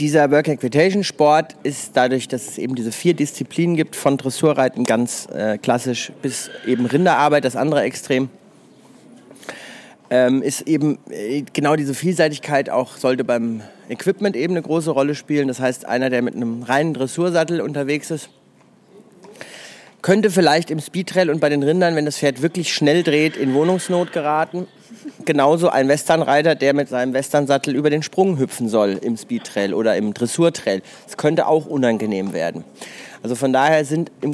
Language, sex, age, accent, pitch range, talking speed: German, male, 30-49, German, 130-160 Hz, 165 wpm